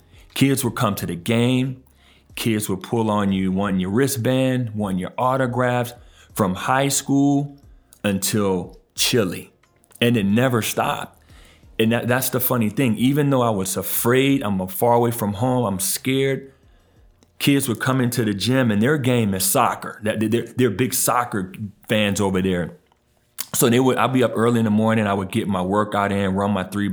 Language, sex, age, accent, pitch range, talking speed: English, male, 40-59, American, 95-125 Hz, 180 wpm